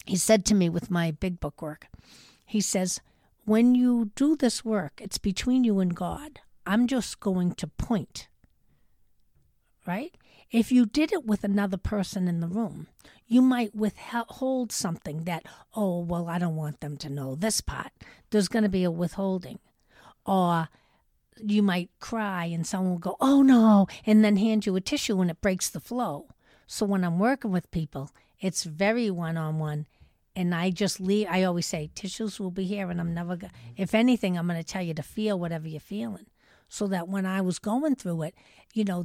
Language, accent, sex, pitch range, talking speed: English, American, female, 165-215 Hz, 195 wpm